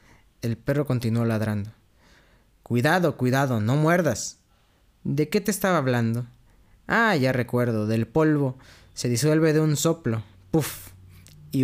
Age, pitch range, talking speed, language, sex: 20-39, 115-155 Hz, 130 wpm, Spanish, male